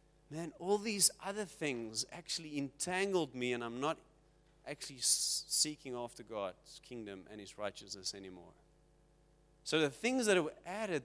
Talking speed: 140 wpm